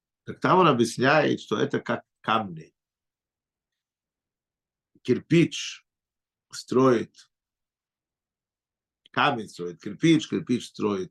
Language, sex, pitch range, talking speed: Russian, male, 110-155 Hz, 80 wpm